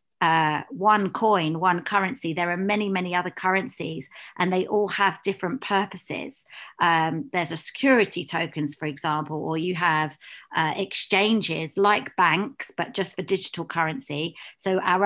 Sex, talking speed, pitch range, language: female, 150 wpm, 170-200 Hz, English